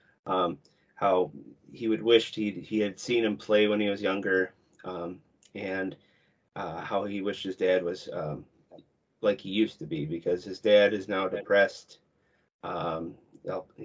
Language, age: English, 30-49